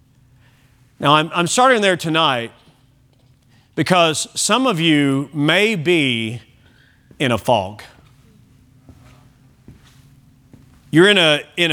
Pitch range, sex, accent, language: 130-185 Hz, male, American, English